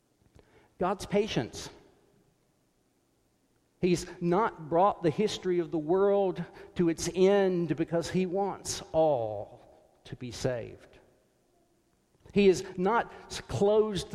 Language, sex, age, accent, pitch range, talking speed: English, male, 50-69, American, 130-185 Hz, 100 wpm